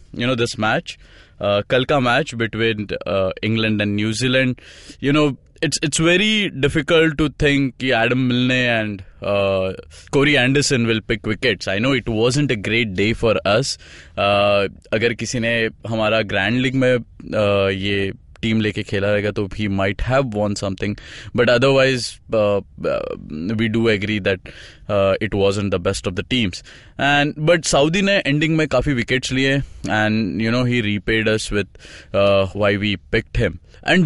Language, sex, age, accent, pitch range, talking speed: English, male, 20-39, Indian, 100-145 Hz, 165 wpm